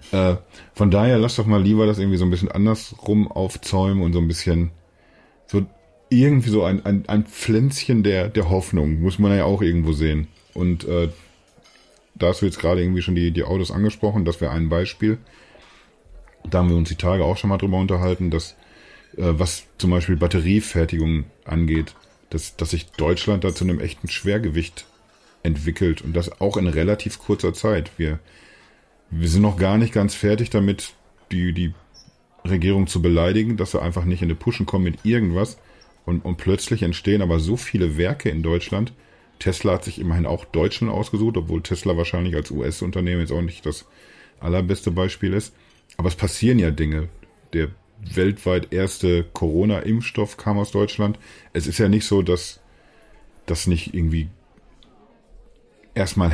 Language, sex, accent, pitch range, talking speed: German, male, German, 85-105 Hz, 170 wpm